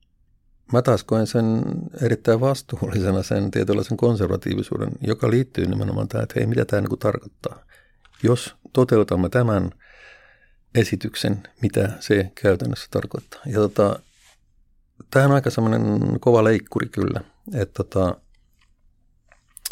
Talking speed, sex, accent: 110 wpm, male, native